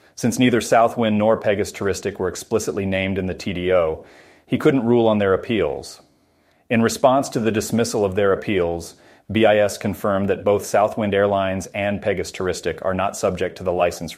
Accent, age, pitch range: American, 30-49, 95-110 Hz